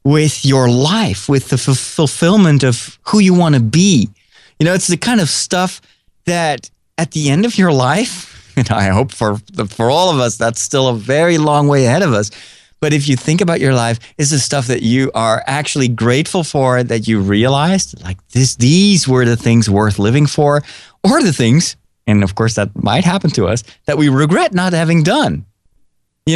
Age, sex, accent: 30-49, male, American